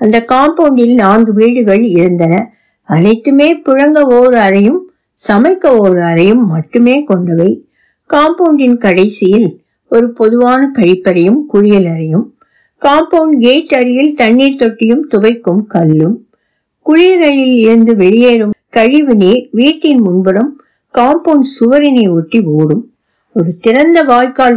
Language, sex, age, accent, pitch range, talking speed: Tamil, female, 60-79, native, 195-275 Hz, 100 wpm